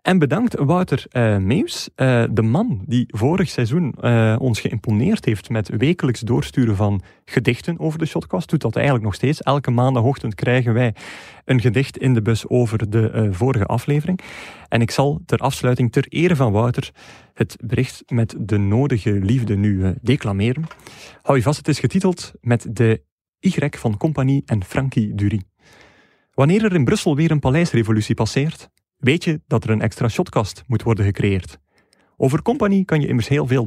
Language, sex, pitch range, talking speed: Dutch, male, 110-145 Hz, 175 wpm